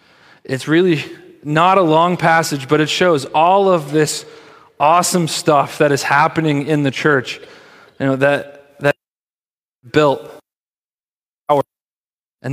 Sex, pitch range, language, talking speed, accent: male, 130-165 Hz, English, 130 wpm, American